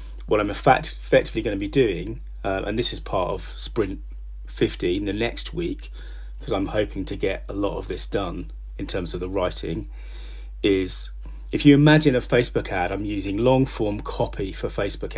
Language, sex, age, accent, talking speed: English, male, 30-49, British, 185 wpm